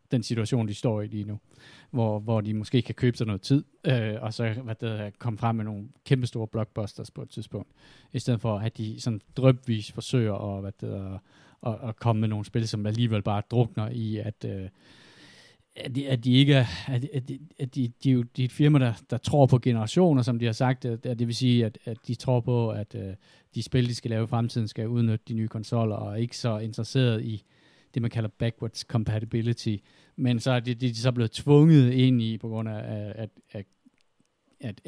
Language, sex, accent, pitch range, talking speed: Danish, male, native, 110-125 Hz, 200 wpm